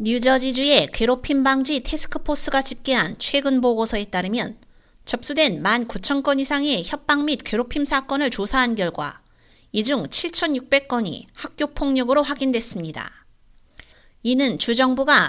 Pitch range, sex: 230-280 Hz, female